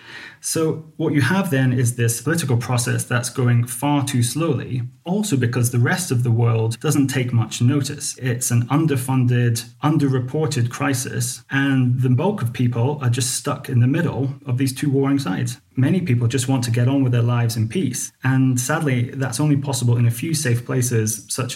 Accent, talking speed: British, 190 wpm